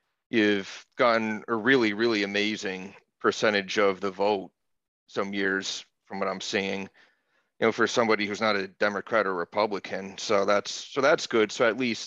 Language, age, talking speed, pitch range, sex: English, 40-59, 170 wpm, 105-130 Hz, male